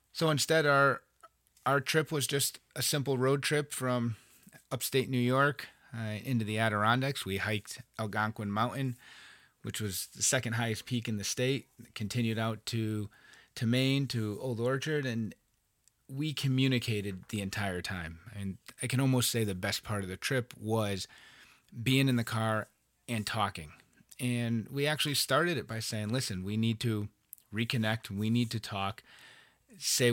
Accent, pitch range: American, 105-130 Hz